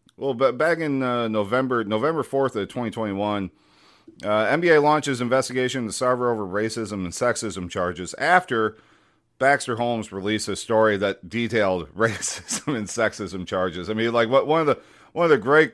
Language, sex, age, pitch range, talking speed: English, male, 40-59, 100-140 Hz, 170 wpm